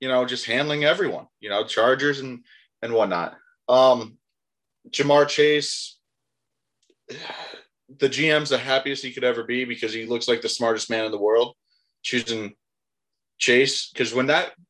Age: 20-39